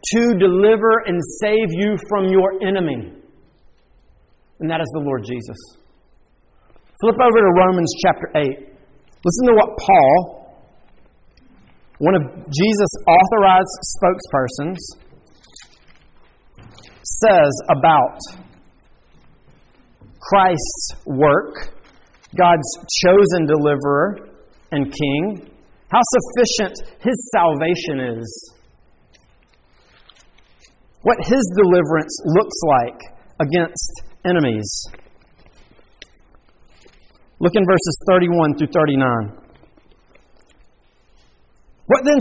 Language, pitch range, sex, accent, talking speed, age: English, 140-210 Hz, male, American, 80 wpm, 40-59